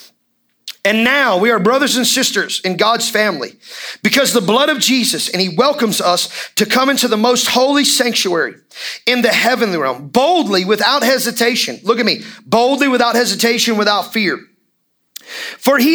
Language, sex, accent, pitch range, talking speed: English, male, American, 170-245 Hz, 160 wpm